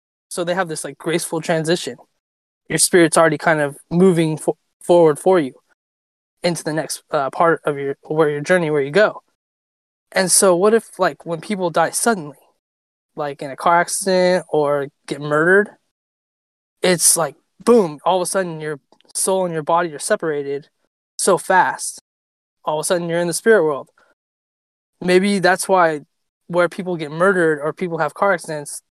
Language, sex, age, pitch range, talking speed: English, male, 20-39, 150-185 Hz, 175 wpm